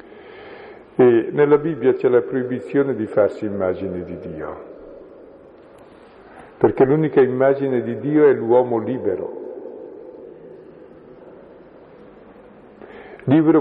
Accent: native